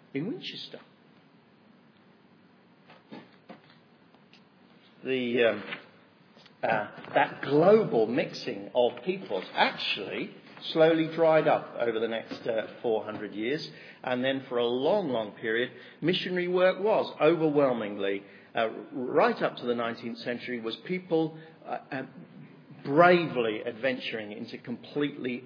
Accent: British